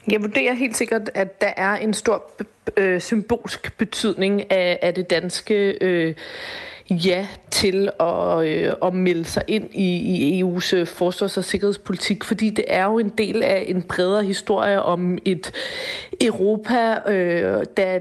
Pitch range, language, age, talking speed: 185-220 Hz, Danish, 30-49, 140 wpm